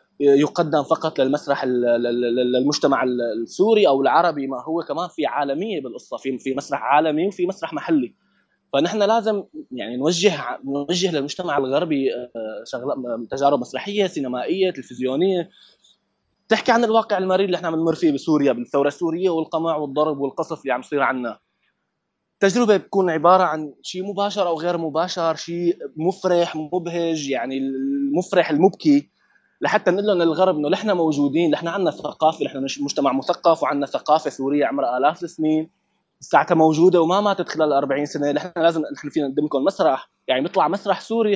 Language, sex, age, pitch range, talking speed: Arabic, male, 20-39, 140-190 Hz, 150 wpm